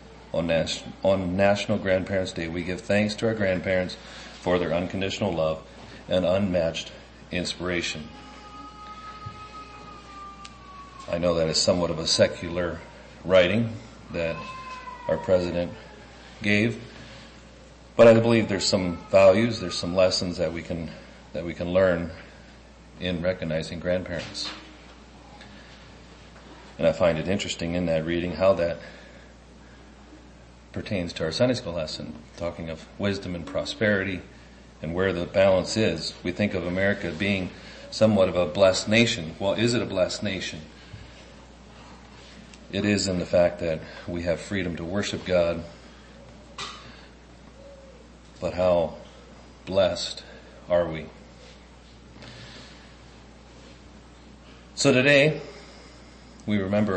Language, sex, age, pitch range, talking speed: English, male, 40-59, 80-105 Hz, 120 wpm